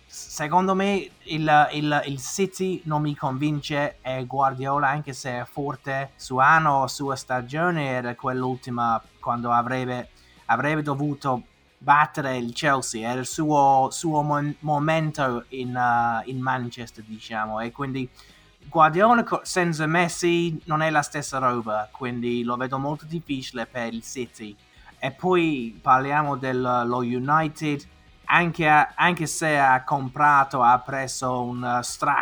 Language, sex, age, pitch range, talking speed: Italian, male, 20-39, 125-150 Hz, 130 wpm